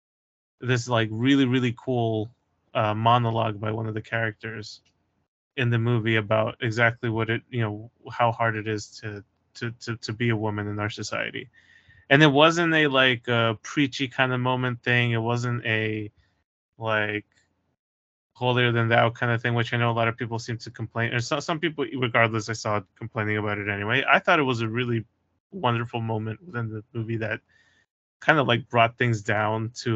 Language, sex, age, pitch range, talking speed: English, male, 20-39, 110-130 Hz, 195 wpm